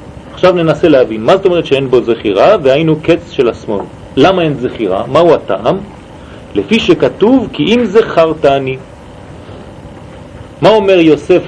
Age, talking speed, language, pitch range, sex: 40-59, 140 wpm, French, 150-210 Hz, male